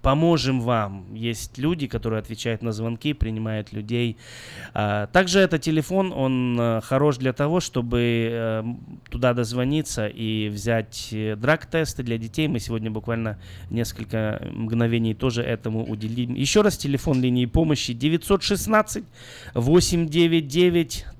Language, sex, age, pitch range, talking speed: Russian, male, 20-39, 115-150 Hz, 115 wpm